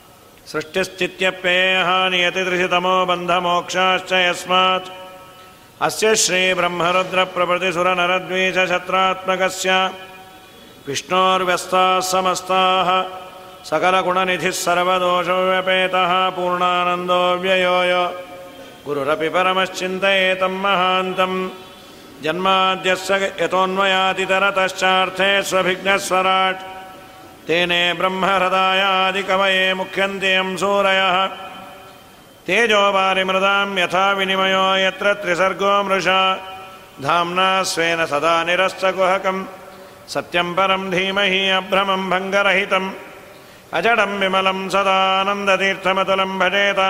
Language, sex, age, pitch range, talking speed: Kannada, male, 50-69, 185-190 Hz, 40 wpm